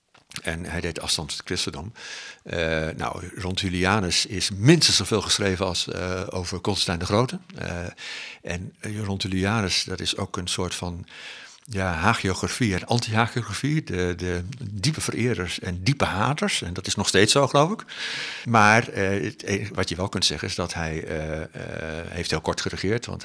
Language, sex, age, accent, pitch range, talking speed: Dutch, male, 60-79, Dutch, 85-100 Hz, 170 wpm